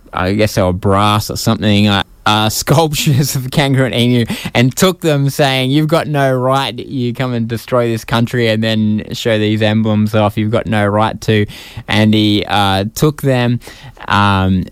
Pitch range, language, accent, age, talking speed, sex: 95-120 Hz, English, Australian, 20-39, 180 wpm, male